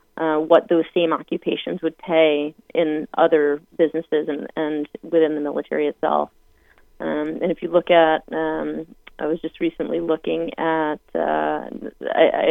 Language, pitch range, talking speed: English, 155-170 Hz, 145 wpm